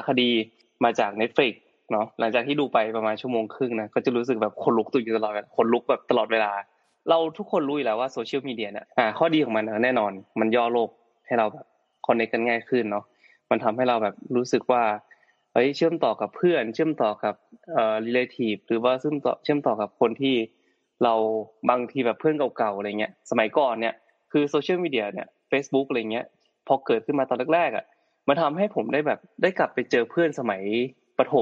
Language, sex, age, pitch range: Thai, male, 20-39, 110-140 Hz